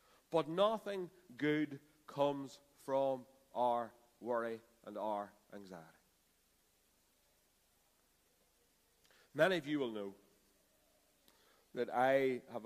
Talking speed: 85 wpm